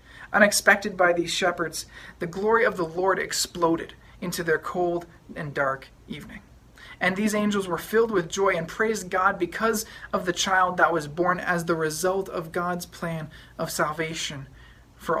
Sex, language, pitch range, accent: male, English, 165-195 Hz, American